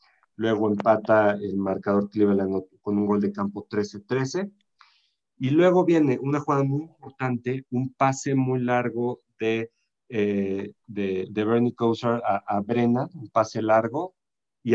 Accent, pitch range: Mexican, 105-150 Hz